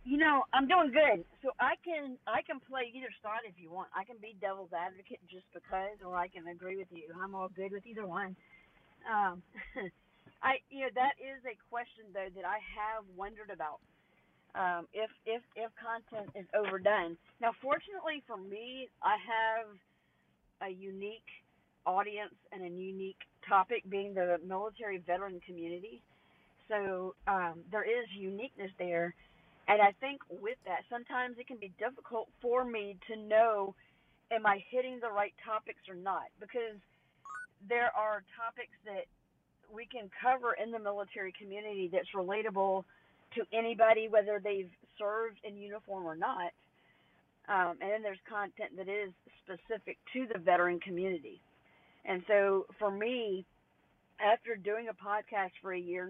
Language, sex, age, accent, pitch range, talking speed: English, female, 40-59, American, 190-230 Hz, 160 wpm